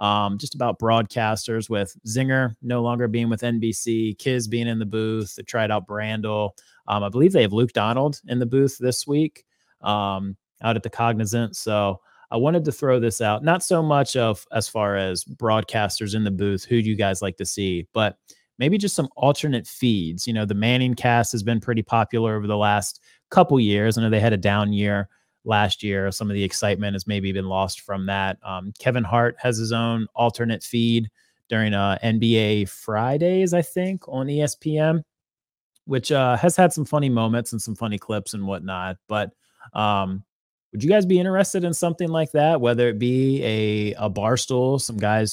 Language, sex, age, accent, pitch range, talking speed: English, male, 30-49, American, 105-125 Hz, 195 wpm